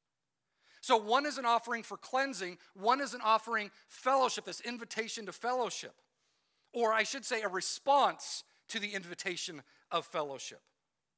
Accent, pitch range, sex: American, 185-240 Hz, male